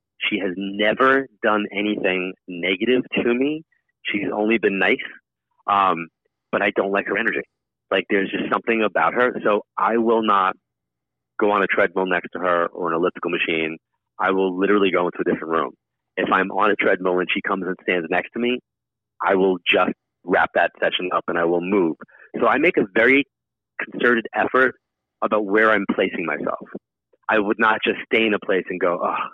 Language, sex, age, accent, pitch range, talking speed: English, male, 30-49, American, 95-115 Hz, 195 wpm